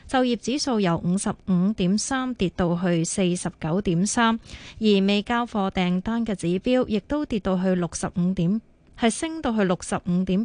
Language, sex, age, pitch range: Chinese, female, 20-39, 185-230 Hz